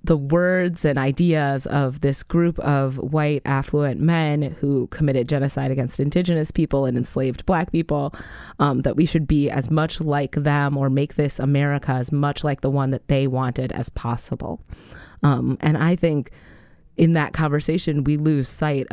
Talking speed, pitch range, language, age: 170 wpm, 135-160 Hz, English, 20-39